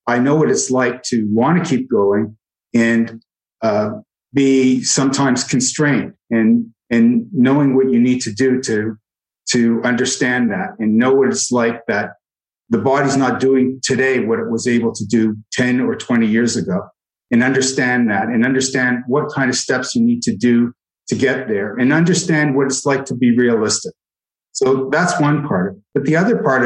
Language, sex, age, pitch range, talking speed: English, male, 50-69, 120-140 Hz, 180 wpm